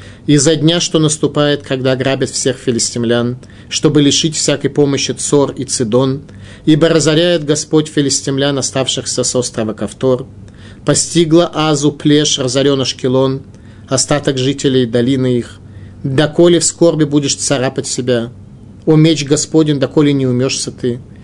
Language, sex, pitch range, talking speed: Russian, male, 120-150 Hz, 125 wpm